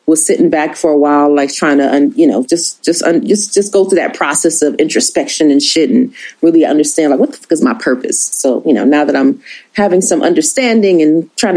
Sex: female